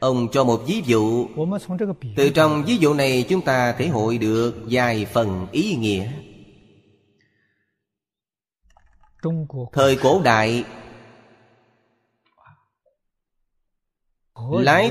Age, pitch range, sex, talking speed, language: 30-49, 110-140 Hz, male, 95 wpm, Vietnamese